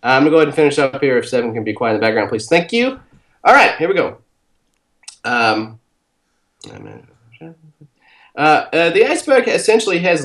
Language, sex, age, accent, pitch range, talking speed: English, male, 30-49, American, 135-180 Hz, 185 wpm